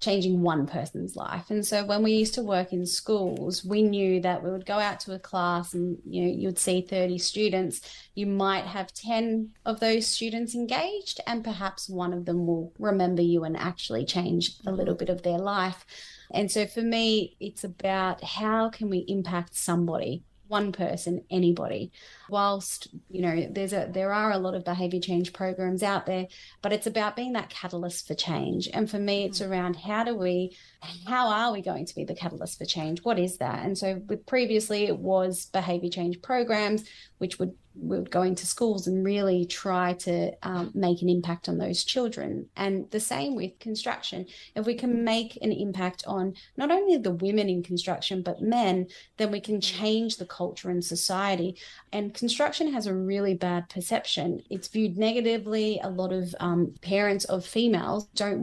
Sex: female